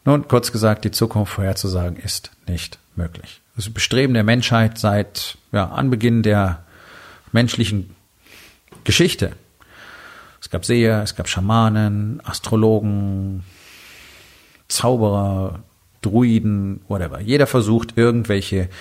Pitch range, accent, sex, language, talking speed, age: 100-120 Hz, German, male, German, 100 wpm, 40-59